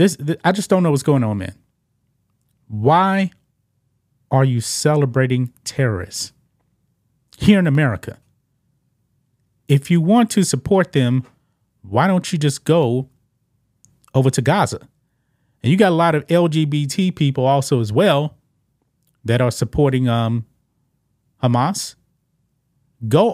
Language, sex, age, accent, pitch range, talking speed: English, male, 30-49, American, 125-150 Hz, 120 wpm